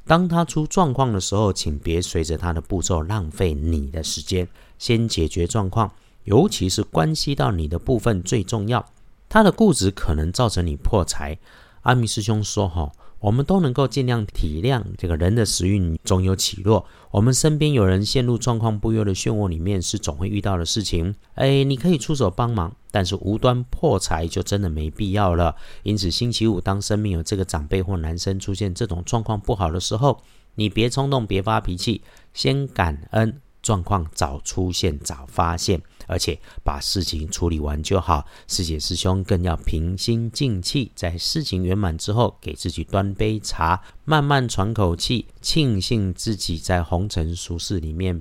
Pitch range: 85-110 Hz